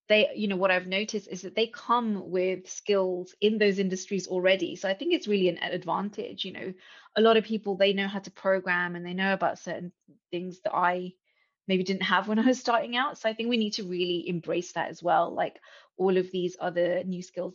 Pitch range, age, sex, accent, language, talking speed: 175-200 Hz, 20-39, female, British, English, 235 wpm